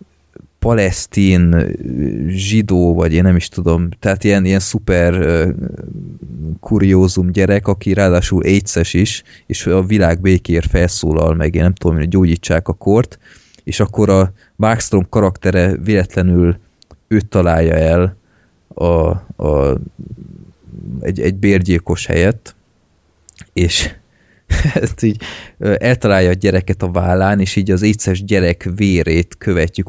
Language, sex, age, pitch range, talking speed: Hungarian, male, 30-49, 85-100 Hz, 120 wpm